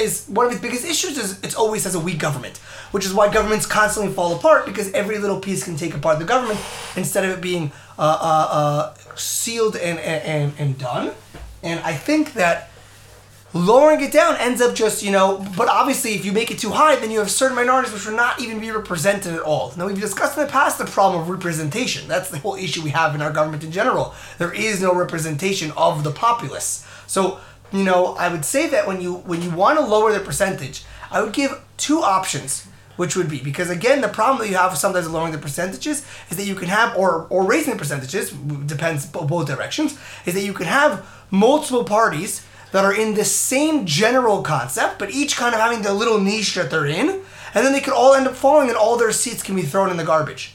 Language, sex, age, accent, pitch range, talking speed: English, male, 20-39, American, 160-230 Hz, 225 wpm